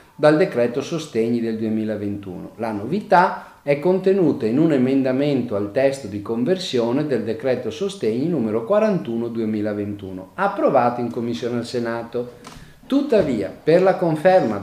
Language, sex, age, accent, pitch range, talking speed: Italian, male, 40-59, native, 115-170 Hz, 125 wpm